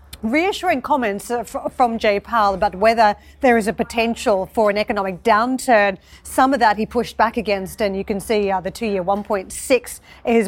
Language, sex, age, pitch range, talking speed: English, female, 40-59, 200-250 Hz, 180 wpm